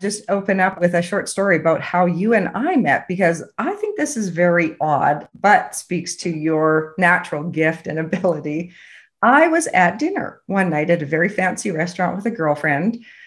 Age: 50-69